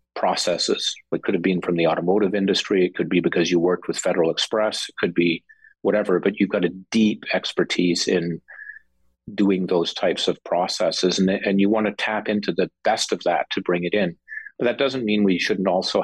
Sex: male